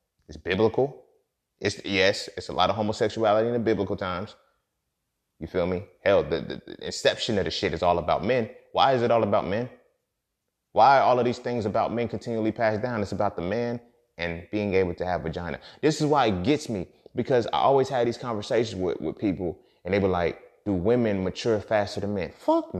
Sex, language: male, English